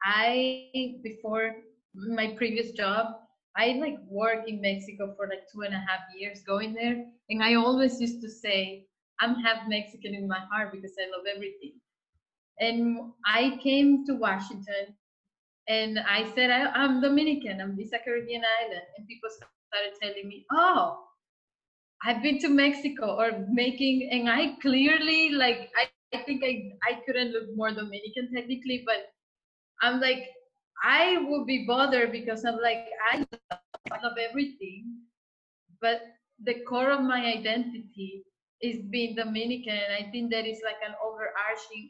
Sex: female